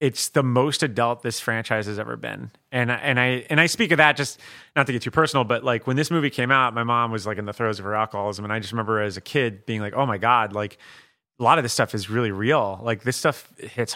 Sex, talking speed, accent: male, 285 wpm, American